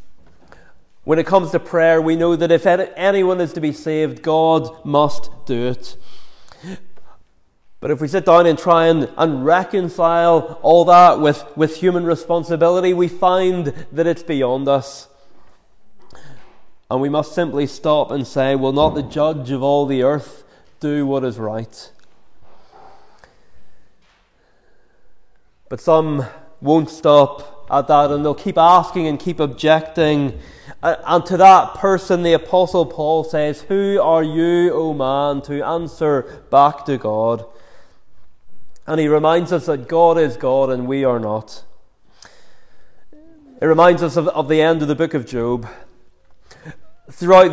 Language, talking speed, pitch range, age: English, 145 wpm, 140-170 Hz, 30-49